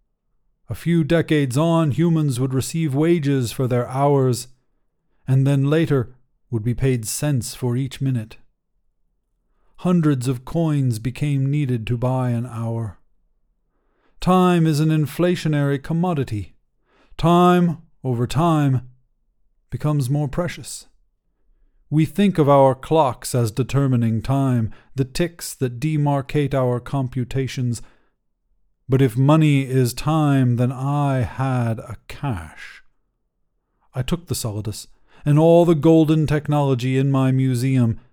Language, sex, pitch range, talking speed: English, male, 125-155 Hz, 120 wpm